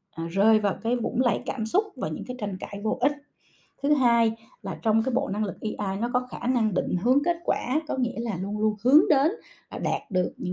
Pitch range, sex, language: 195-255 Hz, female, Vietnamese